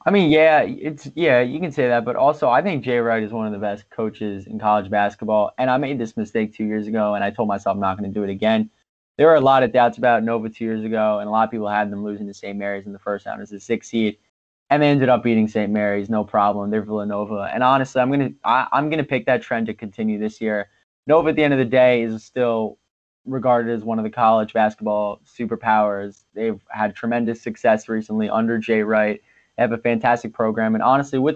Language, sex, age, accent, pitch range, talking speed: English, male, 20-39, American, 105-125 Hz, 245 wpm